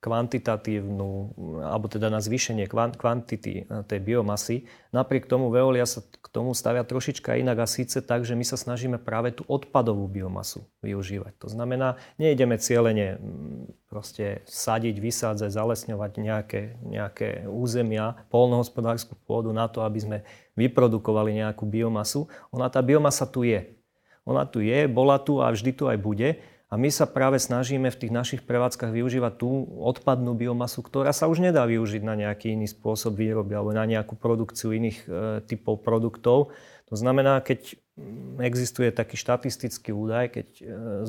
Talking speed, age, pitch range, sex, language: 150 wpm, 30-49, 110-125 Hz, male, Slovak